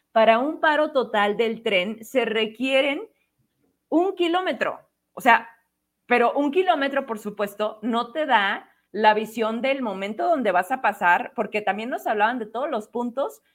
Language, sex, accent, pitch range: Spanish, female, Mexican, 220-305 Hz